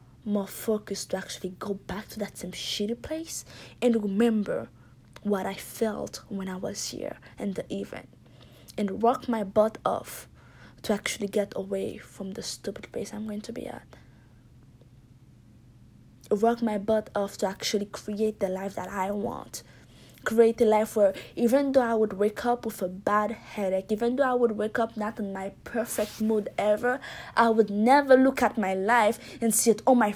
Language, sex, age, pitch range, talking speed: English, female, 20-39, 190-225 Hz, 180 wpm